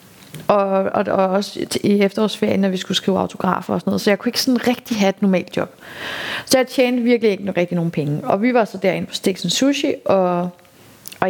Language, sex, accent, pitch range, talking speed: Danish, female, native, 180-220 Hz, 225 wpm